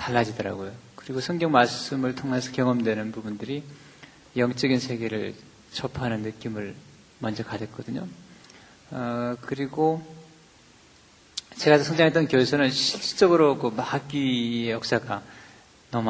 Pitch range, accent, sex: 115-145 Hz, native, male